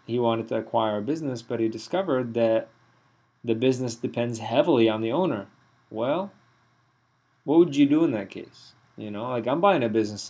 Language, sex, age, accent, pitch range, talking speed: English, male, 30-49, American, 110-135 Hz, 185 wpm